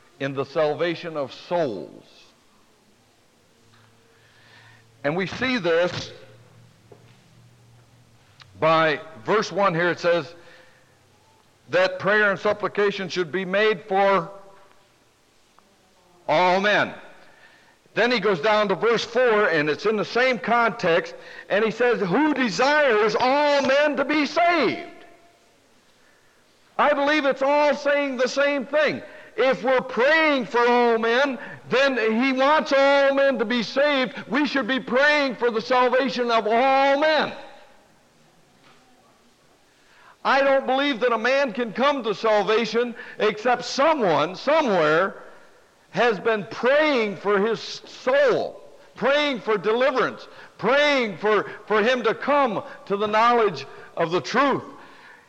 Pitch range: 190-275 Hz